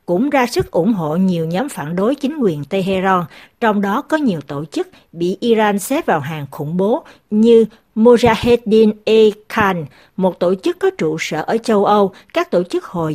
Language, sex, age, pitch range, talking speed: Vietnamese, female, 60-79, 175-235 Hz, 185 wpm